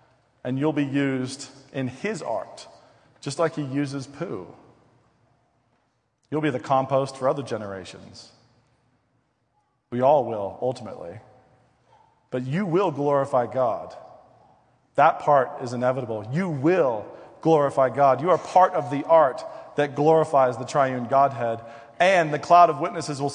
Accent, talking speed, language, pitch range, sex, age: American, 135 wpm, English, 120-150 Hz, male, 40-59